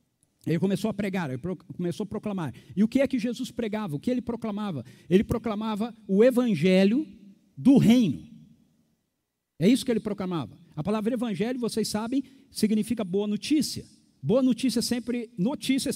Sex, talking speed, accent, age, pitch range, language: male, 145 wpm, Brazilian, 50-69, 185-230 Hz, Portuguese